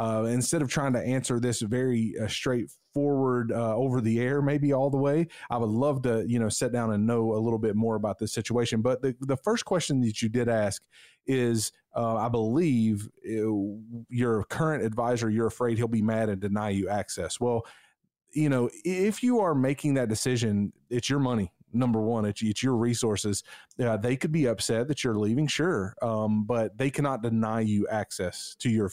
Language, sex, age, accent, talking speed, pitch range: English, male, 30-49, American, 200 wpm, 110-130 Hz